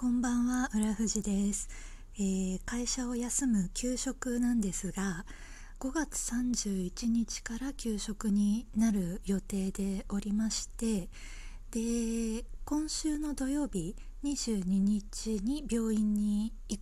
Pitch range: 195-240 Hz